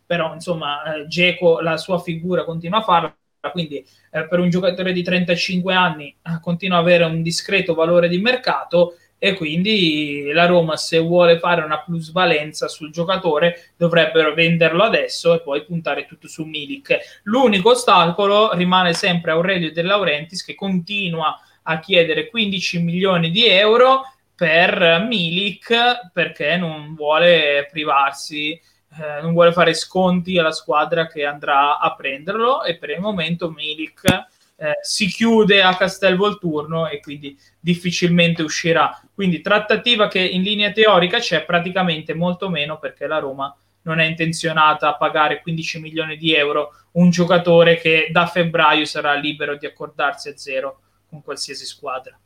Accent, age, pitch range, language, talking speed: native, 20-39, 155-185 Hz, Italian, 150 wpm